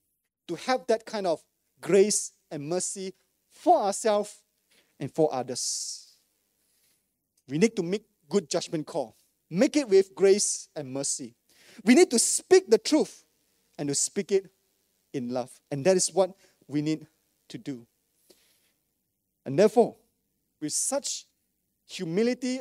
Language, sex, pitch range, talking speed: English, male, 155-230 Hz, 135 wpm